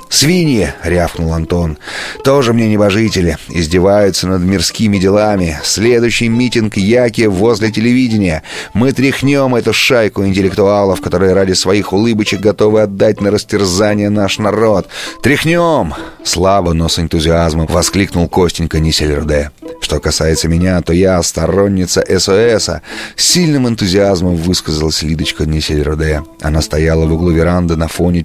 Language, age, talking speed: Russian, 30-49, 125 wpm